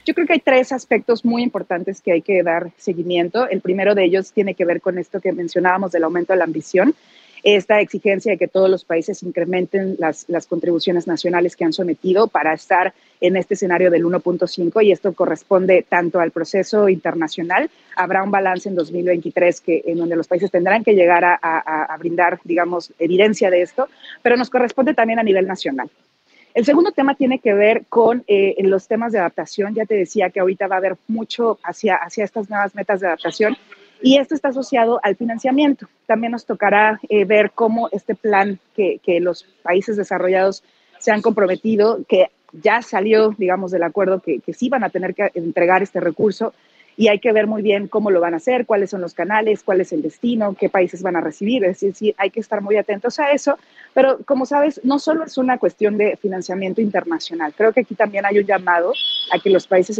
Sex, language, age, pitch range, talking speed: female, Spanish, 30-49, 180-220 Hz, 210 wpm